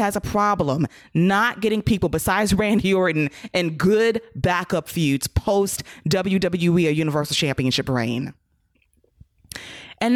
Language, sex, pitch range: English, female, 160-215 Hz